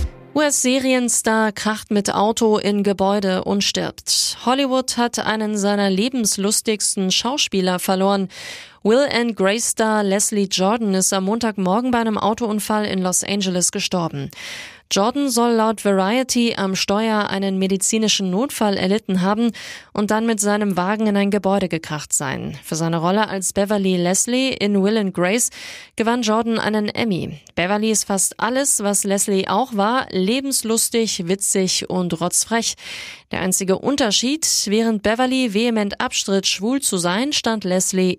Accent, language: German, German